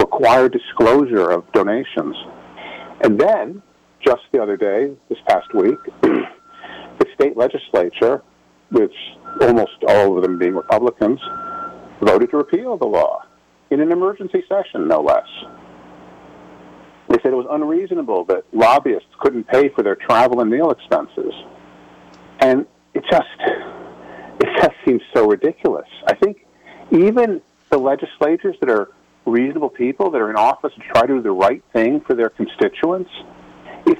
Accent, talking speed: American, 145 wpm